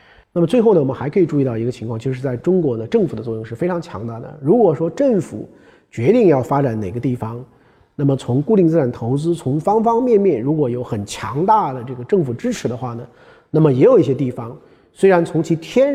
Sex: male